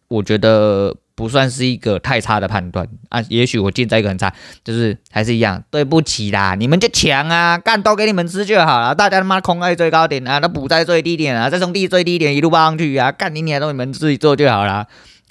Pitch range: 100-130 Hz